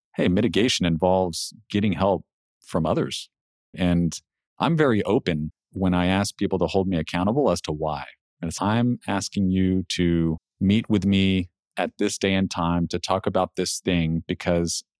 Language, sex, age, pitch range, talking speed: English, male, 40-59, 90-105 Hz, 170 wpm